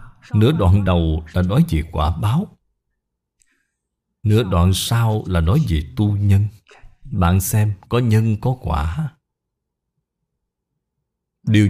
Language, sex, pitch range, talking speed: Vietnamese, male, 85-125 Hz, 120 wpm